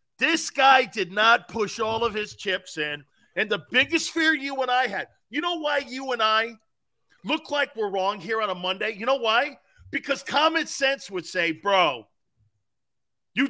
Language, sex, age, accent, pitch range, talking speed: English, male, 40-59, American, 190-275 Hz, 185 wpm